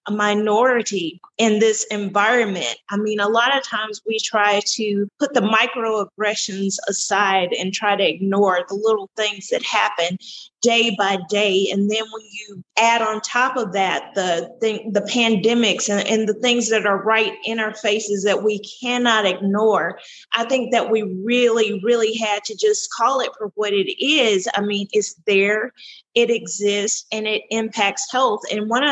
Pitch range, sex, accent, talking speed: 205-245 Hz, female, American, 175 wpm